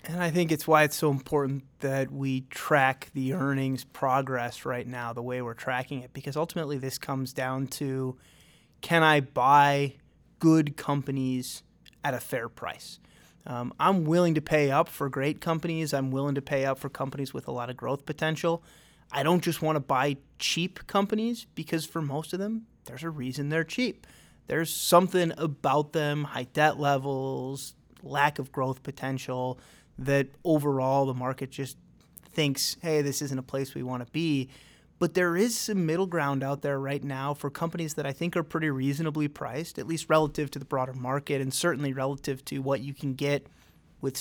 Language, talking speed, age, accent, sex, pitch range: English, 185 wpm, 30-49, American, male, 135-155 Hz